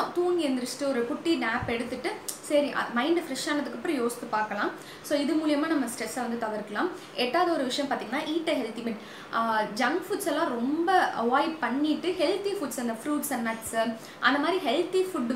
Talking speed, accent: 125 wpm, native